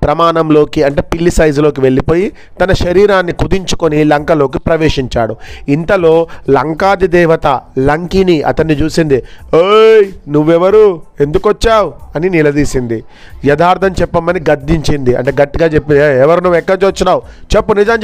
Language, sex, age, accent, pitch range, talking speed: Telugu, male, 30-49, native, 150-185 Hz, 110 wpm